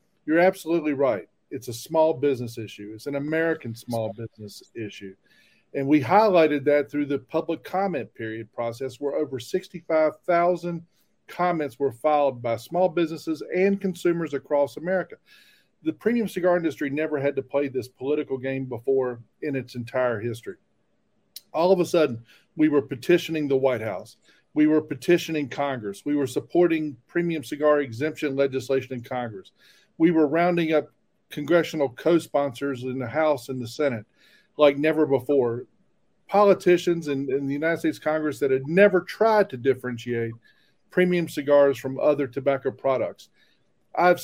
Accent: American